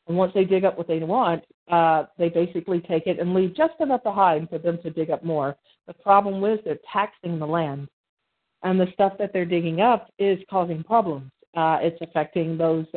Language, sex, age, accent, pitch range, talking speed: English, female, 40-59, American, 160-190 Hz, 210 wpm